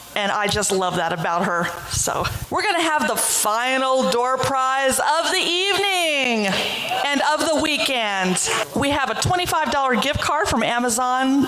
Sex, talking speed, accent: female, 160 wpm, American